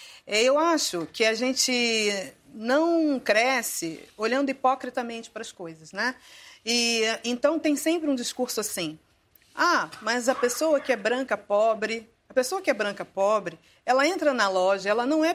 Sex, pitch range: female, 210-285 Hz